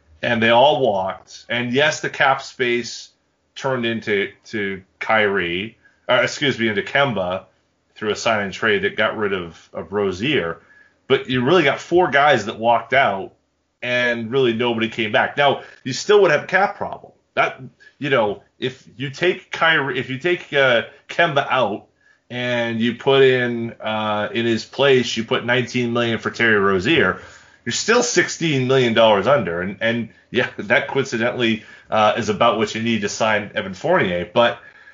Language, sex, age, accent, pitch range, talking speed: English, male, 30-49, American, 110-135 Hz, 175 wpm